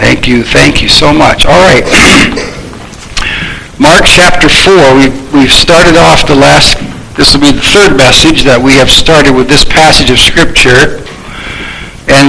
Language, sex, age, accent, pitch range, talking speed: English, male, 60-79, American, 130-150 Hz, 150 wpm